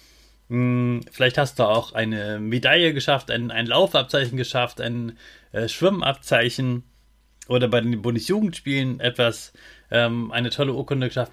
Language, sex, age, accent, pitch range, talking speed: German, male, 30-49, German, 115-140 Hz, 125 wpm